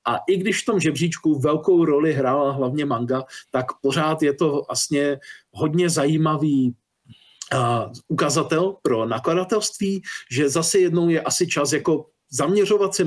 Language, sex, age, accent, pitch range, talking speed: Czech, male, 40-59, native, 135-180 Hz, 140 wpm